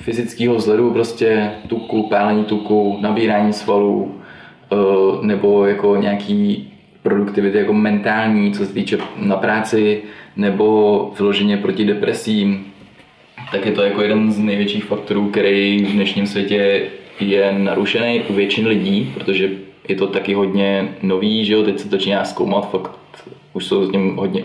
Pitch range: 100-110 Hz